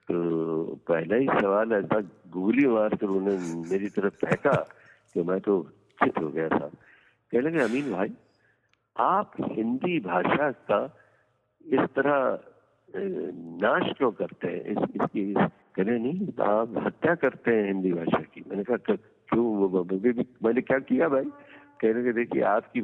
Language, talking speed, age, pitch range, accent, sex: Hindi, 65 wpm, 60-79, 100-120 Hz, native, male